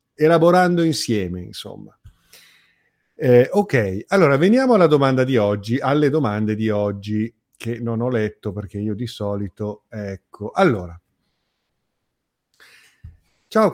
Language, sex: Italian, male